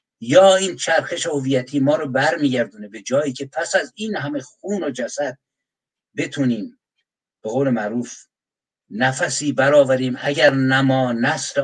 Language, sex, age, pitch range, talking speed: Persian, male, 60-79, 130-170 Hz, 135 wpm